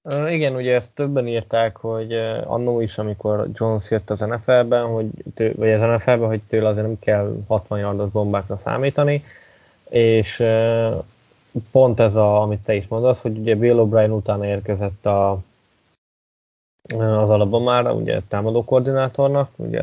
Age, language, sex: 20-39, Hungarian, male